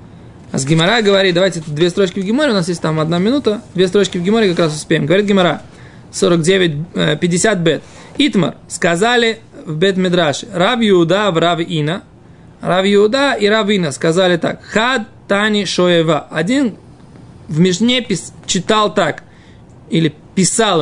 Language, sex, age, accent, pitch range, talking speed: Russian, male, 20-39, native, 165-210 Hz, 145 wpm